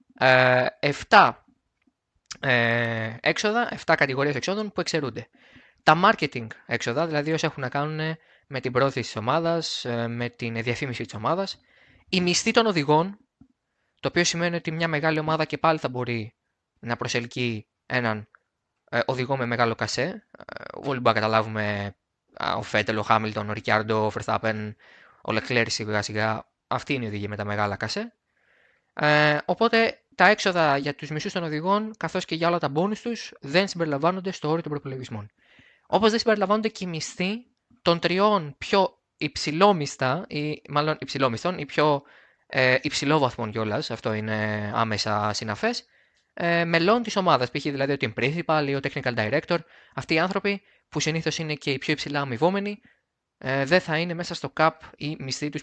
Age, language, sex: 20-39, Greek, male